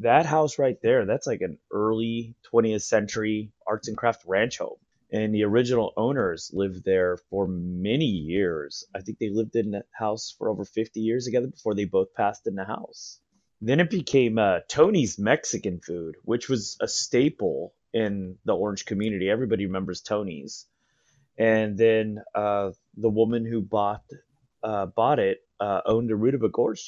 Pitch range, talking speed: 100-115 Hz, 175 wpm